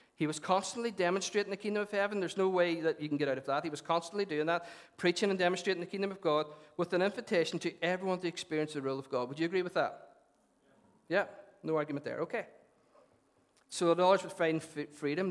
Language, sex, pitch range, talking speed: English, male, 145-190 Hz, 225 wpm